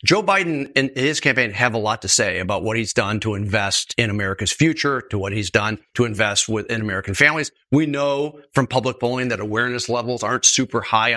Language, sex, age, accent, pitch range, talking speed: English, male, 40-59, American, 115-145 Hz, 210 wpm